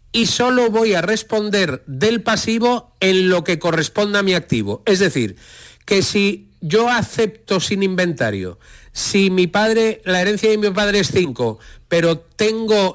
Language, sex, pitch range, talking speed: Spanish, male, 150-210 Hz, 160 wpm